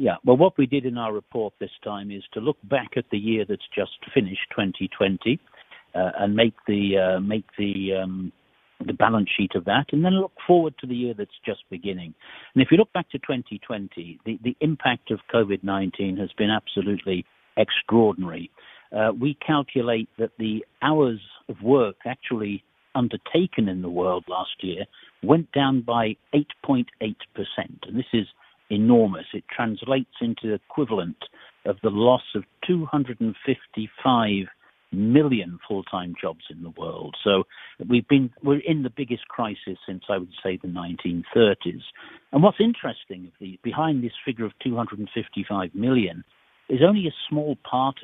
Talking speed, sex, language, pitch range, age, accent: 160 wpm, male, English, 100-135 Hz, 60-79, British